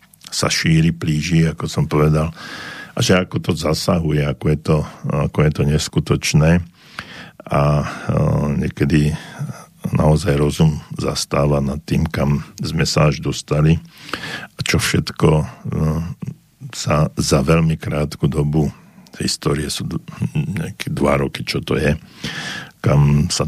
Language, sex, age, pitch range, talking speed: Slovak, male, 50-69, 75-80 Hz, 130 wpm